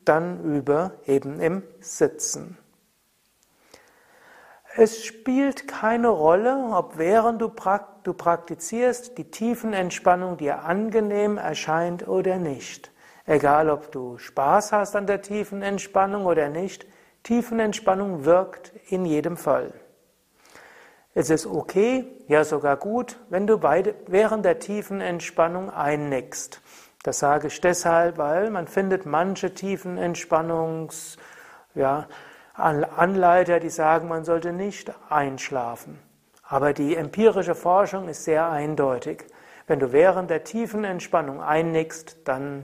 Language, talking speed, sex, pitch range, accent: German, 110 wpm, male, 150-195 Hz, German